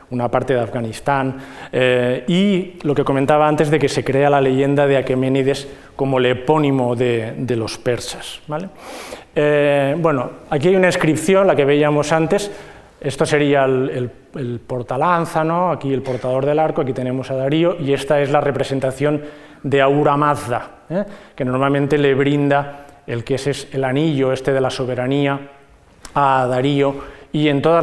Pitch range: 130-155 Hz